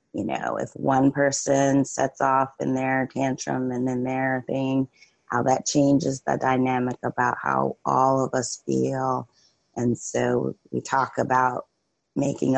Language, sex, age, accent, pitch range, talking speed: English, female, 30-49, American, 120-135 Hz, 150 wpm